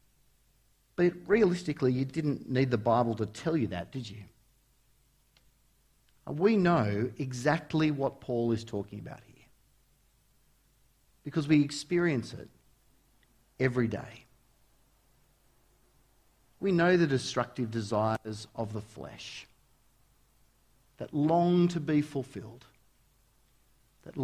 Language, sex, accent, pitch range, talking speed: English, male, Australian, 115-140 Hz, 105 wpm